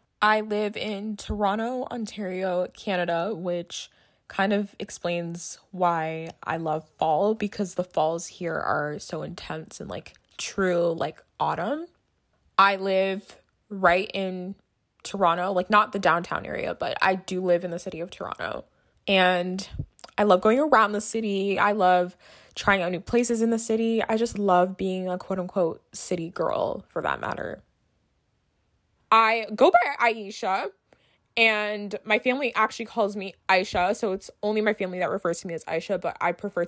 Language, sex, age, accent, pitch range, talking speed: English, female, 20-39, American, 180-215 Hz, 160 wpm